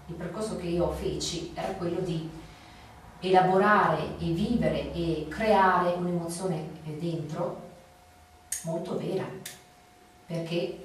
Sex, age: female, 40-59